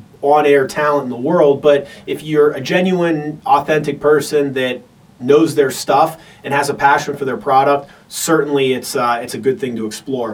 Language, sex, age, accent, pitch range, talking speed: English, male, 30-49, American, 130-155 Hz, 185 wpm